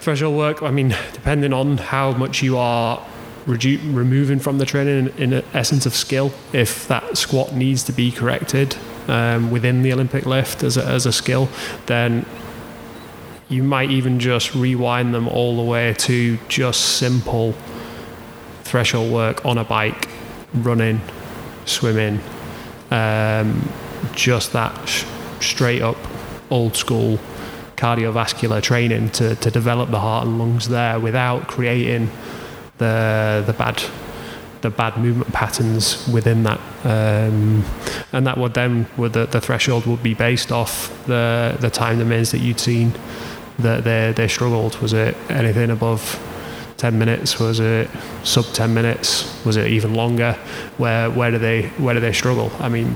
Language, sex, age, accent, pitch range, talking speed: English, male, 20-39, British, 115-125 Hz, 150 wpm